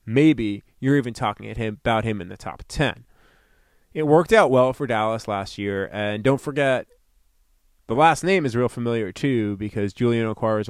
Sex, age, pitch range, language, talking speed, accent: male, 30-49, 110-155 Hz, English, 185 wpm, American